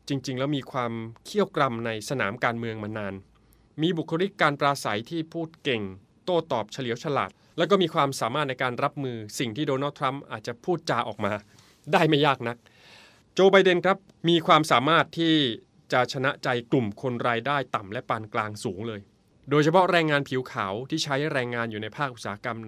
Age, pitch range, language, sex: 20-39, 115-150 Hz, English, male